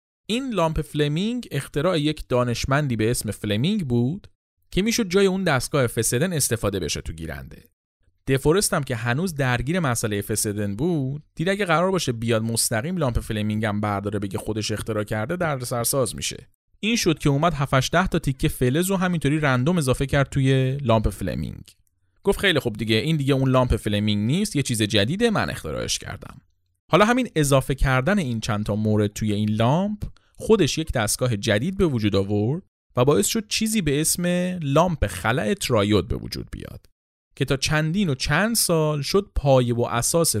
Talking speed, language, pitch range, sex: 170 wpm, Persian, 105-170 Hz, male